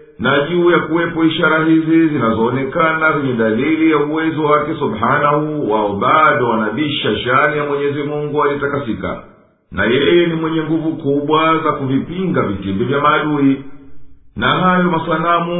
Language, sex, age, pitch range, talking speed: Swahili, male, 50-69, 140-160 Hz, 130 wpm